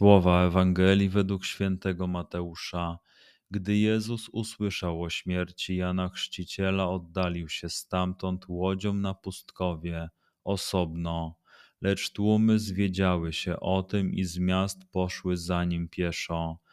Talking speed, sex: 115 wpm, male